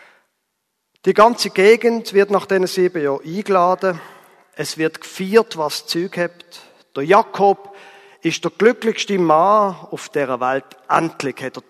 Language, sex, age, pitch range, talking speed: German, male, 40-59, 155-220 Hz, 140 wpm